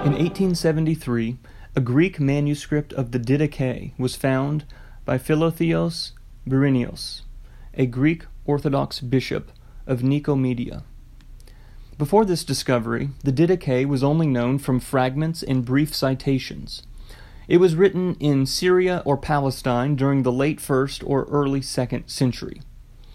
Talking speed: 120 wpm